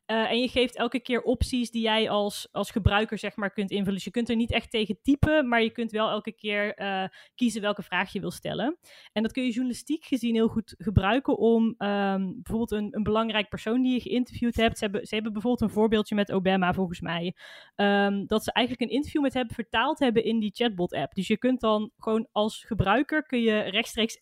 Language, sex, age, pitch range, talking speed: Dutch, female, 20-39, 200-235 Hz, 230 wpm